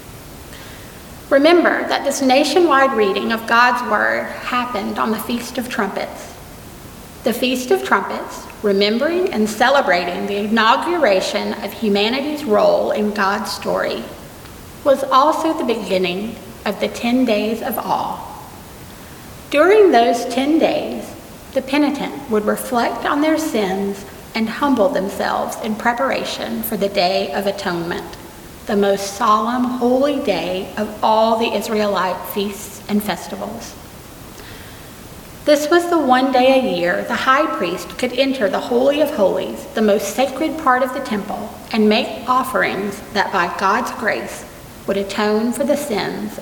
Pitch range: 205-270 Hz